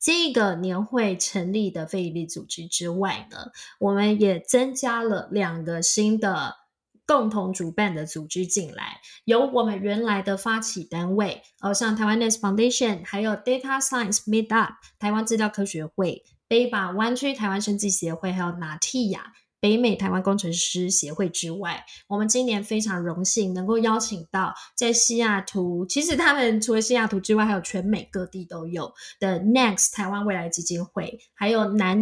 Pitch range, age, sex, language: 185-235 Hz, 20-39, female, Chinese